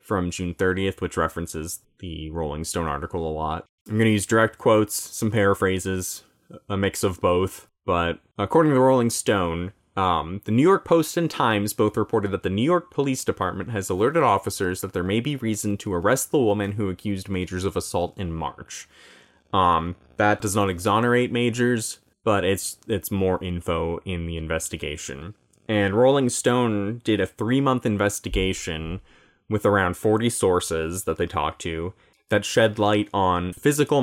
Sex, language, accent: male, English, American